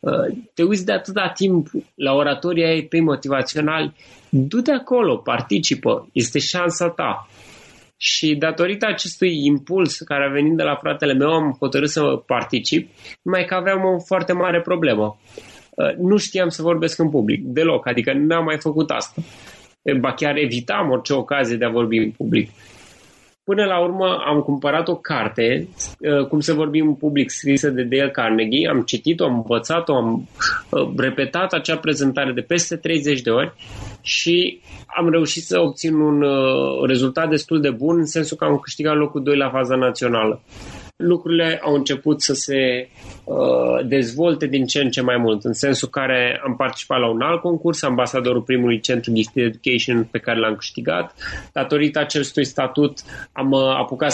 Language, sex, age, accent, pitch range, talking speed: Romanian, male, 20-39, native, 130-165 Hz, 160 wpm